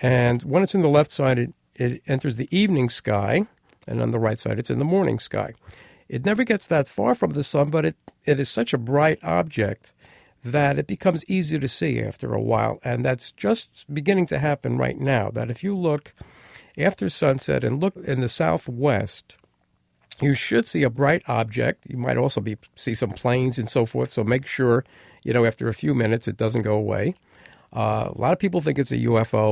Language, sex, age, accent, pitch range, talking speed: English, male, 50-69, American, 115-140 Hz, 215 wpm